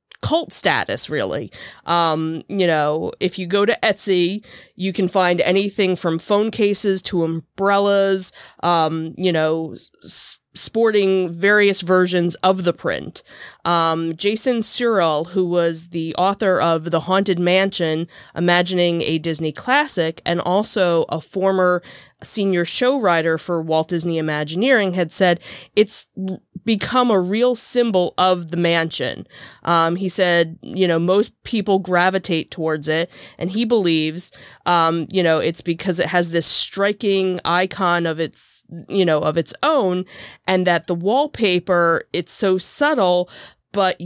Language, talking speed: English, 140 wpm